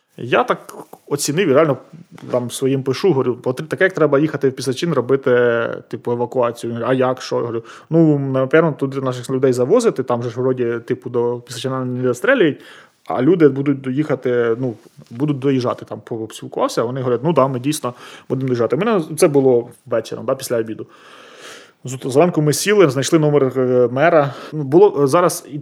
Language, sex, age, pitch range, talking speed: Ukrainian, male, 20-39, 120-145 Hz, 170 wpm